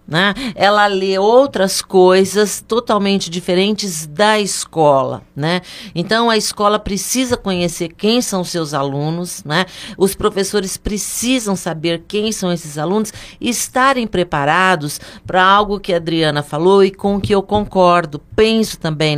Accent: Brazilian